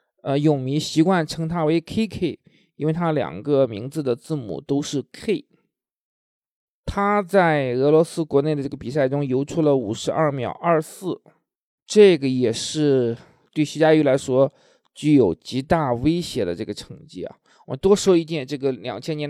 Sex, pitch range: male, 135-170 Hz